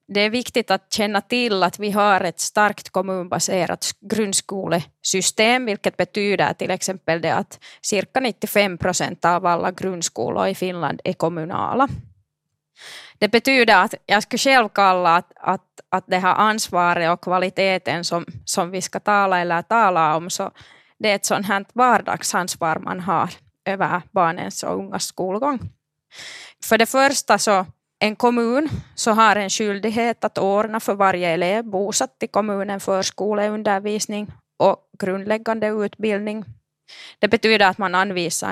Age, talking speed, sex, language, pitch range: 20-39, 140 wpm, female, Finnish, 180-210 Hz